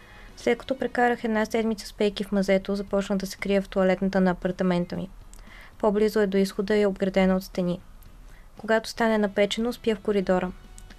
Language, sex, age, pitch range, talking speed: Bulgarian, female, 20-39, 190-215 Hz, 180 wpm